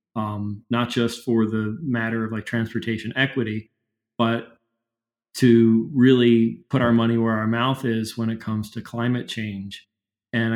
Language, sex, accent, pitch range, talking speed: English, male, American, 110-125 Hz, 155 wpm